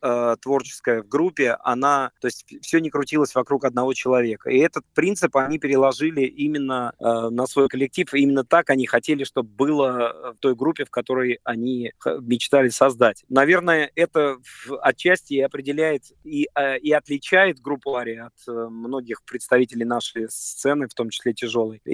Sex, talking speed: male, 155 wpm